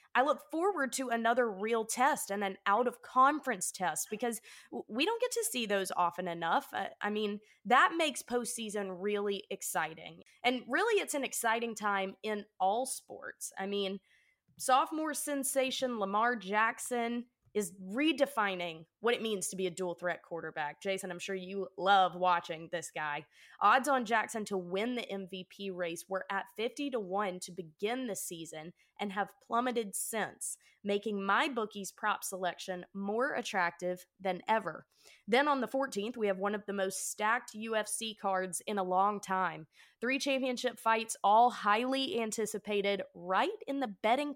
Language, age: English, 20-39